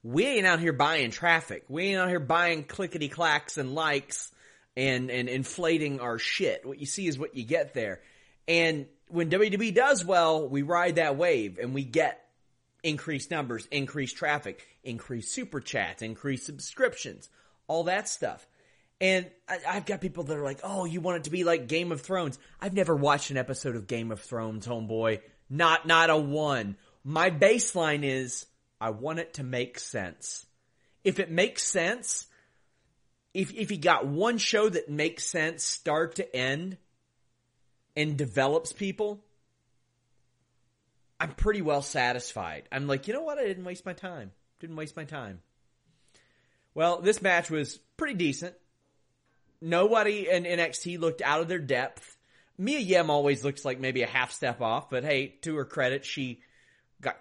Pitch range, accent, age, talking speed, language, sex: 125-175 Hz, American, 30-49, 170 wpm, English, male